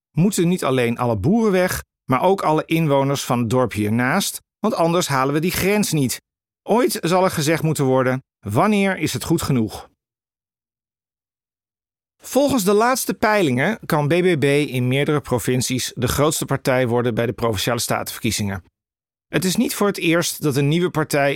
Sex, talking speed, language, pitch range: male, 165 wpm, Dutch, 120-170 Hz